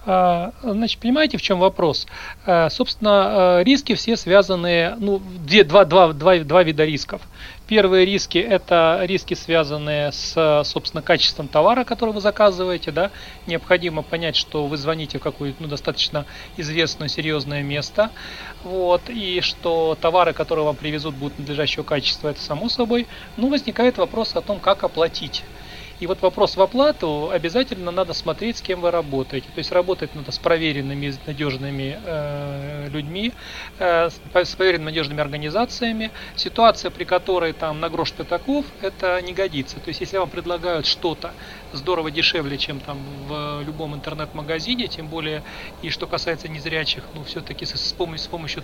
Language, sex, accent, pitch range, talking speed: Russian, male, native, 150-190 Hz, 145 wpm